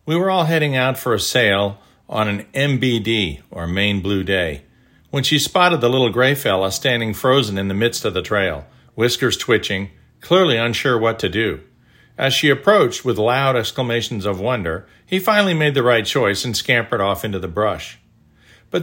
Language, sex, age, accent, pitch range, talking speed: English, male, 50-69, American, 105-145 Hz, 185 wpm